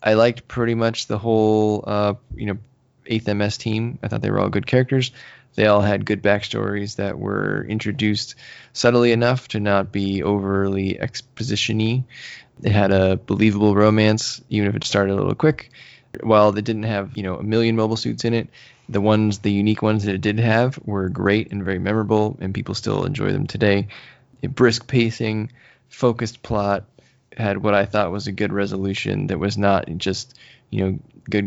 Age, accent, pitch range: 20-39, American, 100-120 Hz